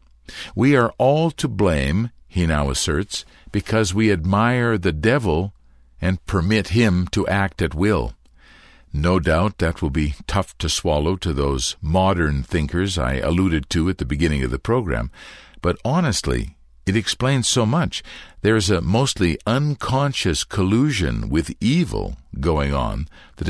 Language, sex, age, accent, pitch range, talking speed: English, male, 60-79, American, 75-105 Hz, 150 wpm